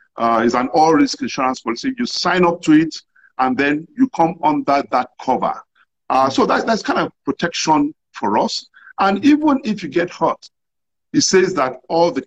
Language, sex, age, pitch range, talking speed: English, male, 50-69, 155-250 Hz, 190 wpm